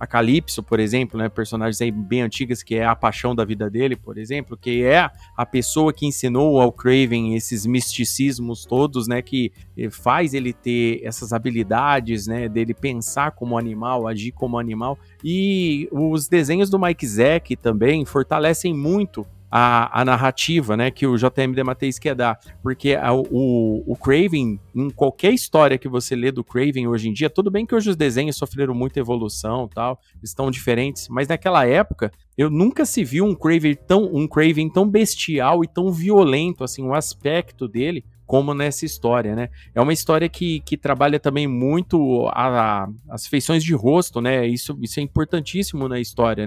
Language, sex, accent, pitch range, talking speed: Portuguese, male, Brazilian, 115-155 Hz, 180 wpm